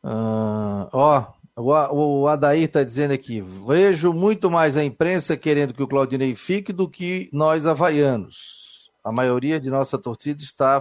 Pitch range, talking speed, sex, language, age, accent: 135-180 Hz, 150 wpm, male, Portuguese, 40-59, Brazilian